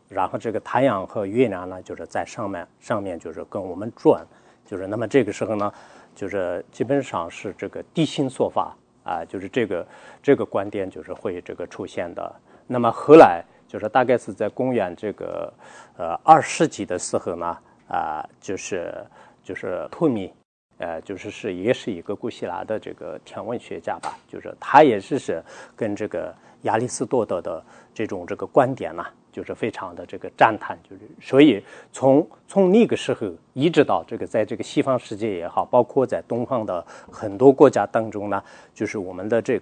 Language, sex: English, male